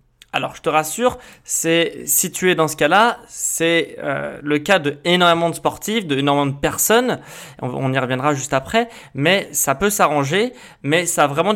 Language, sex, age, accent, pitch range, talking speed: French, male, 20-39, French, 145-195 Hz, 185 wpm